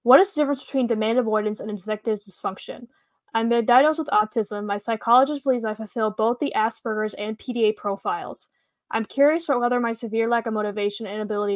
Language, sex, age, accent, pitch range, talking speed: English, female, 10-29, American, 210-245 Hz, 185 wpm